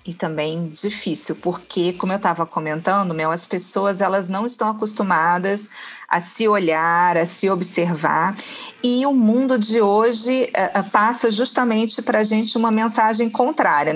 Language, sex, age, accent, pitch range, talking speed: Portuguese, female, 40-59, Brazilian, 180-220 Hz, 150 wpm